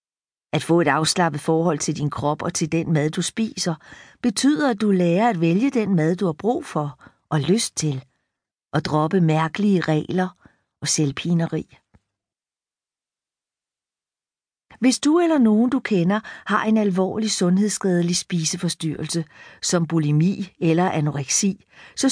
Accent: native